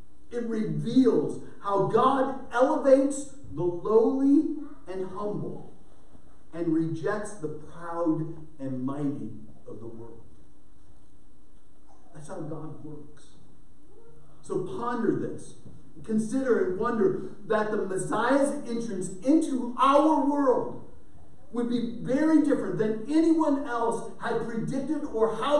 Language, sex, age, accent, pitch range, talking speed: English, male, 50-69, American, 165-255 Hz, 110 wpm